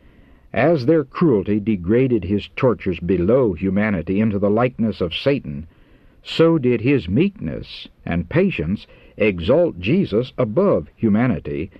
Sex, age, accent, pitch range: male, 60-79, American, 95-125 Hz